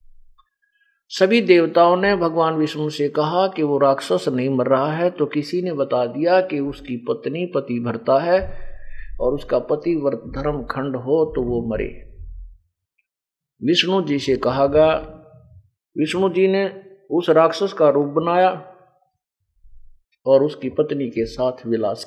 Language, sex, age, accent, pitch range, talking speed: Hindi, male, 50-69, native, 130-185 Hz, 145 wpm